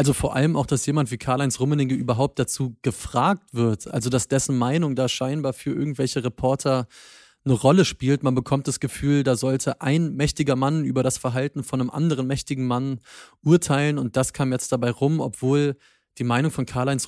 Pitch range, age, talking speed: 125-145 Hz, 30-49, 190 wpm